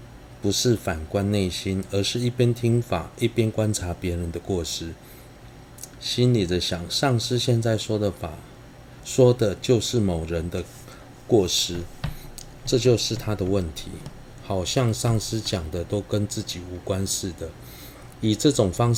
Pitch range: 90-120 Hz